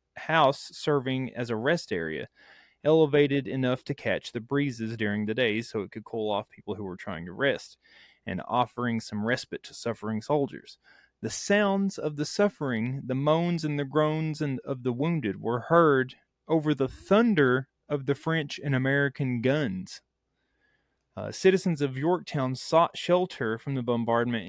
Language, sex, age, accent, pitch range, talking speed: English, male, 30-49, American, 120-150 Hz, 160 wpm